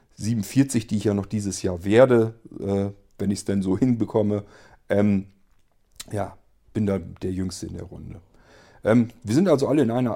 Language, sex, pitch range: German, male, 100-120 Hz